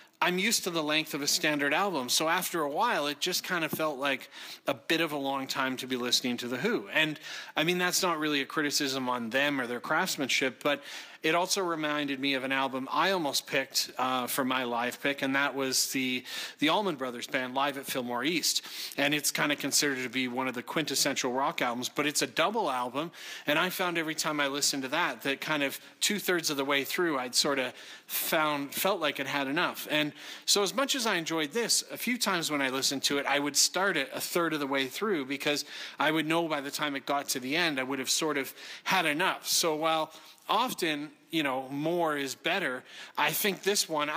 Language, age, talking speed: English, 30-49, 235 wpm